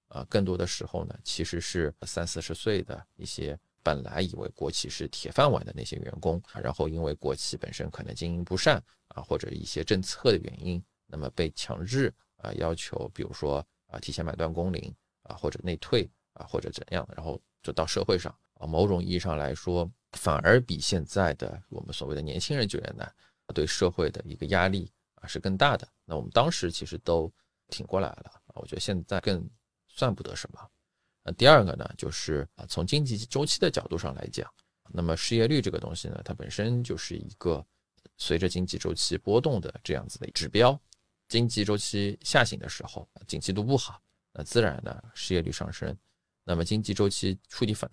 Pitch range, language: 85-105 Hz, Chinese